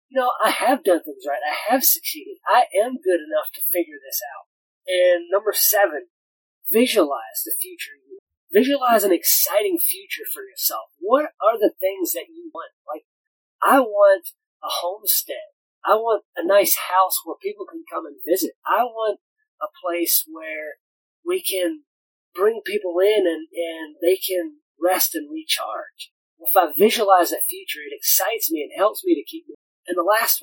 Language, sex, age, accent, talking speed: English, male, 30-49, American, 170 wpm